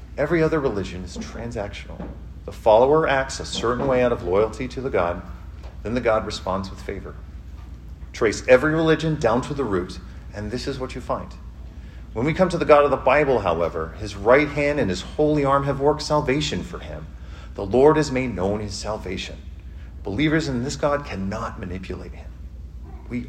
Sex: male